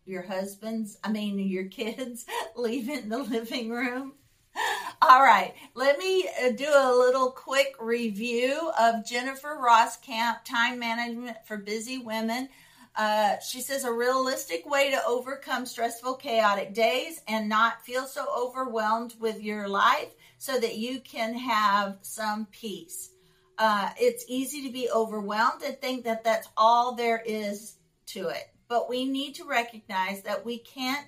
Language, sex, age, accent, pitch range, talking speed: English, female, 50-69, American, 215-260 Hz, 150 wpm